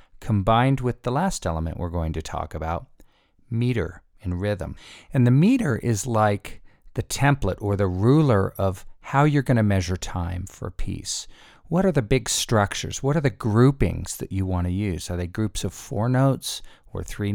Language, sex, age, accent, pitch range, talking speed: English, male, 50-69, American, 95-125 Hz, 190 wpm